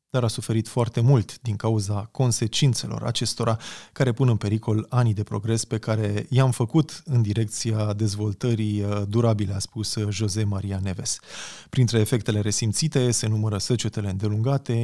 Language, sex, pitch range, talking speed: Romanian, male, 105-130 Hz, 145 wpm